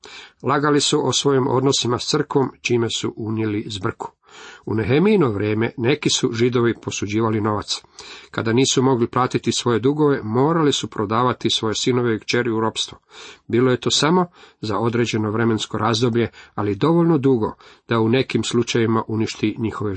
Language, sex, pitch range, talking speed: Croatian, male, 110-135 Hz, 155 wpm